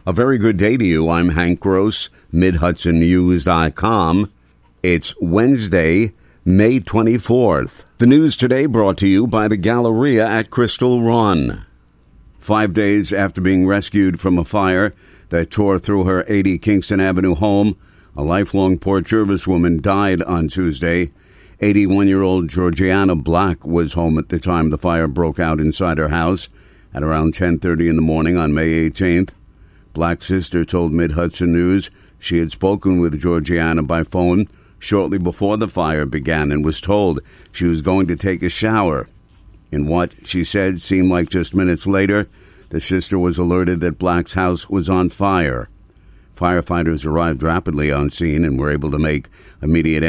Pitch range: 80-95 Hz